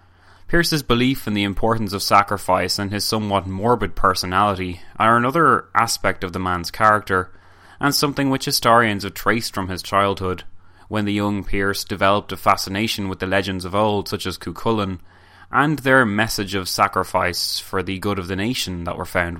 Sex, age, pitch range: male, 20-39, 90-110 Hz